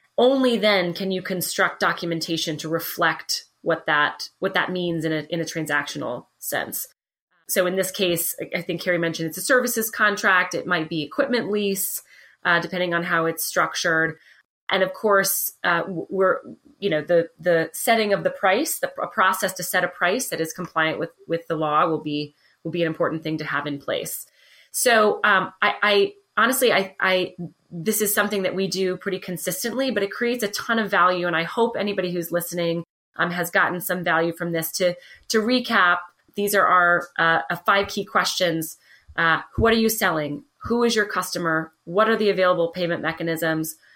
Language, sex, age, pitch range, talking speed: English, female, 30-49, 165-195 Hz, 190 wpm